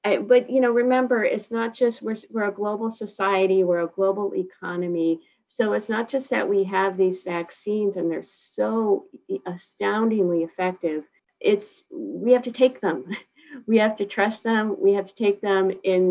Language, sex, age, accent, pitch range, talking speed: English, female, 50-69, American, 170-225 Hz, 180 wpm